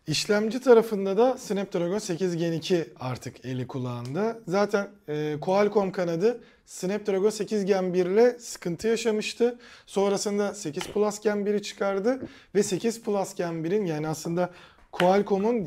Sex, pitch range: male, 165-215 Hz